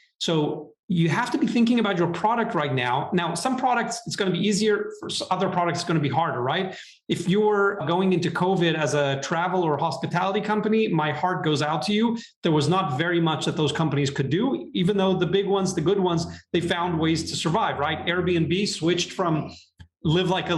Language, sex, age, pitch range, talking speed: English, male, 30-49, 155-195 Hz, 215 wpm